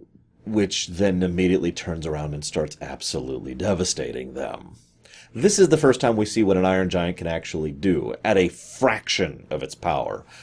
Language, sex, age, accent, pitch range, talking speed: English, male, 40-59, American, 80-110 Hz, 175 wpm